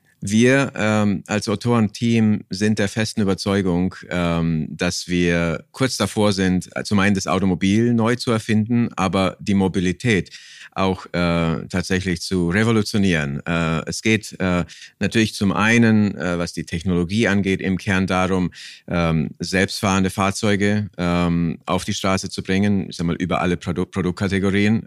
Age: 50-69